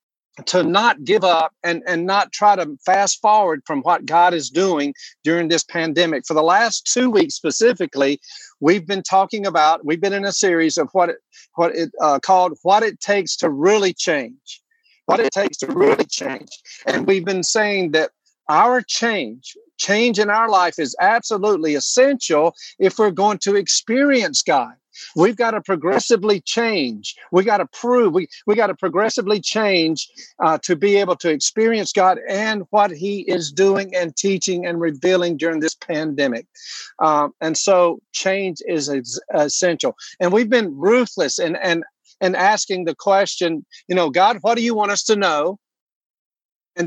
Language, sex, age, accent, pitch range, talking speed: English, male, 50-69, American, 175-230 Hz, 170 wpm